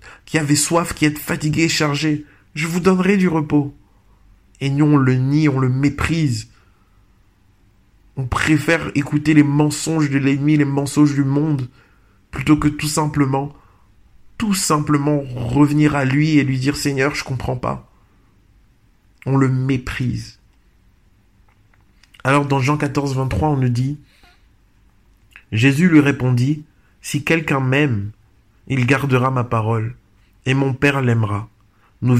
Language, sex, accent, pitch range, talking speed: French, male, French, 105-145 Hz, 150 wpm